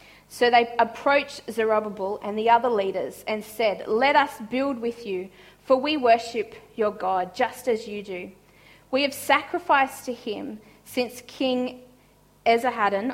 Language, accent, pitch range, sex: English, Australian, 205-275 Hz, female